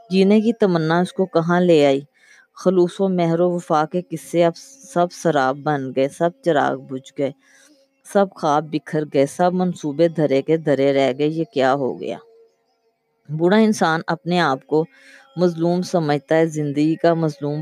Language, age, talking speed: Urdu, 20-39, 155 wpm